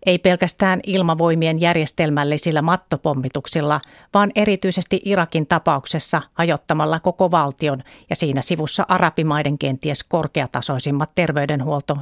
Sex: female